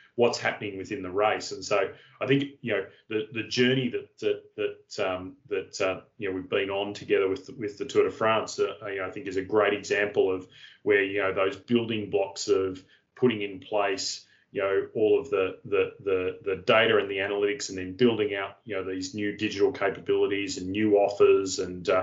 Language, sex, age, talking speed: English, male, 30-49, 210 wpm